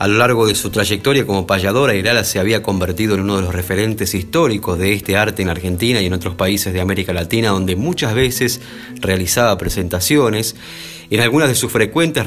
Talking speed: 195 wpm